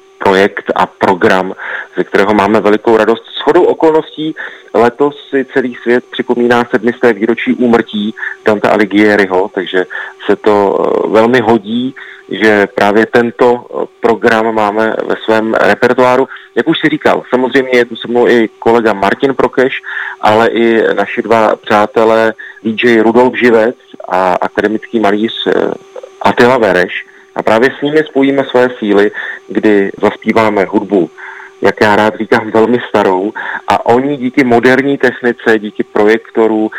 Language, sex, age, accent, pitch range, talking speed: Czech, male, 30-49, native, 105-125 Hz, 135 wpm